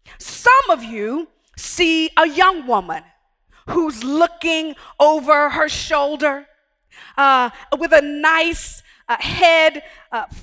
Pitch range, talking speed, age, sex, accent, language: 275-345 Hz, 110 wpm, 40-59, female, American, English